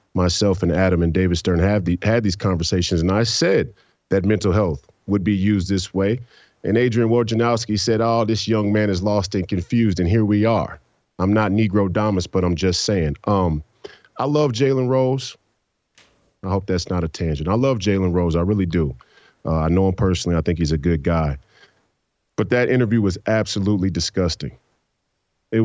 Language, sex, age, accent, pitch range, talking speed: English, male, 40-59, American, 90-115 Hz, 195 wpm